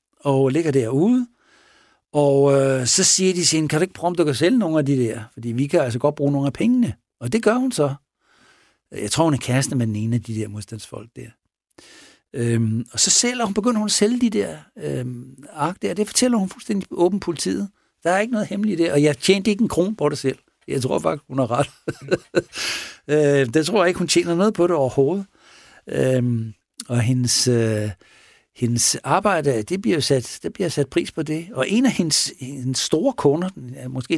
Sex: male